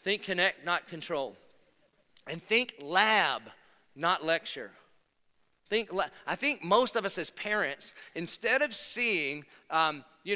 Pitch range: 155-205 Hz